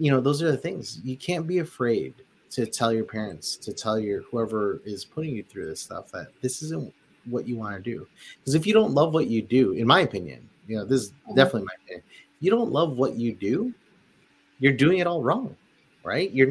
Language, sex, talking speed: English, male, 225 wpm